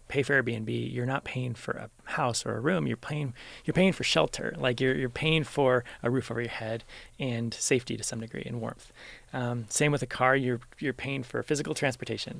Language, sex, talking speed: English, male, 225 wpm